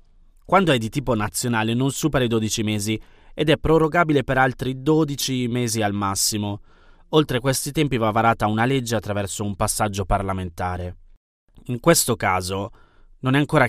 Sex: male